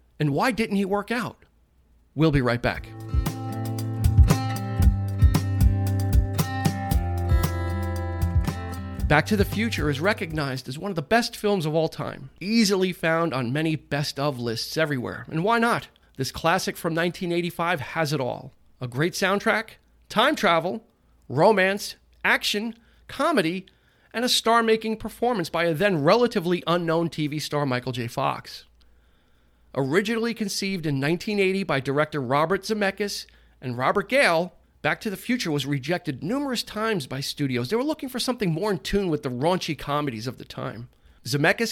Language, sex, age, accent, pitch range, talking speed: English, male, 40-59, American, 130-200 Hz, 140 wpm